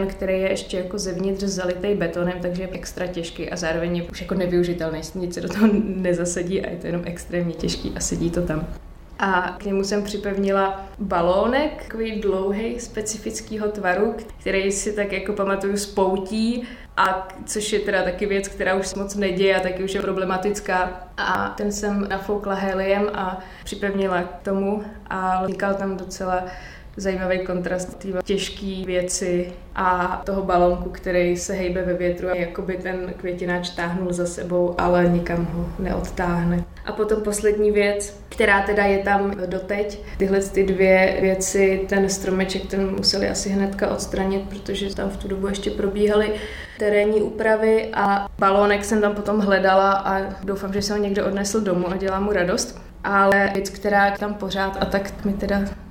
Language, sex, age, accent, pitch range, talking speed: Czech, female, 20-39, native, 185-200 Hz, 170 wpm